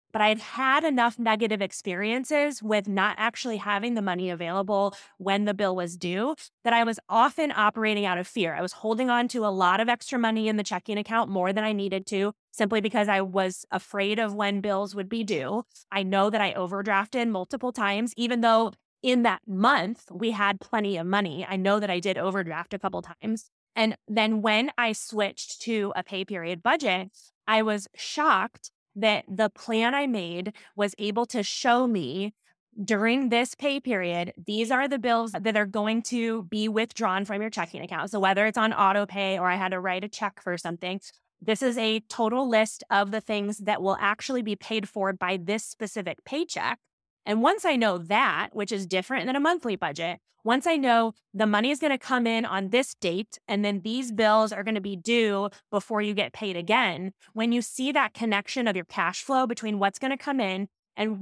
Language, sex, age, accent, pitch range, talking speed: English, female, 20-39, American, 195-230 Hz, 210 wpm